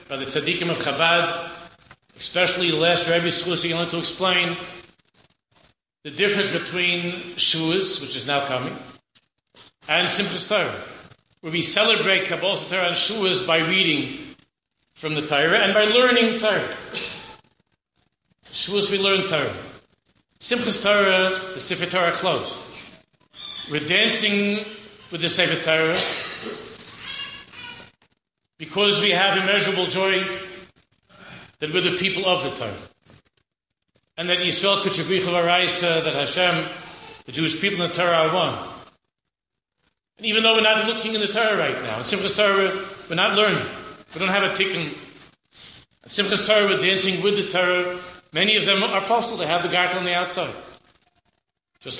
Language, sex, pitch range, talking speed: English, male, 170-200 Hz, 145 wpm